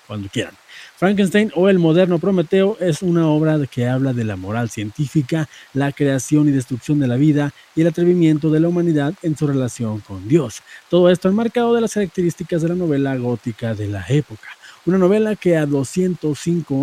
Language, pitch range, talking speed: Spanish, 135-175 Hz, 185 wpm